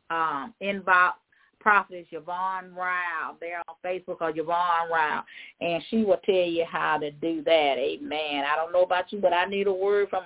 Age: 40-59